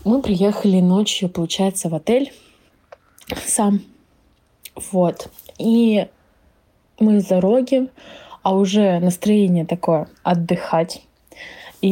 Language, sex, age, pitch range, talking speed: Russian, female, 20-39, 180-225 Hz, 85 wpm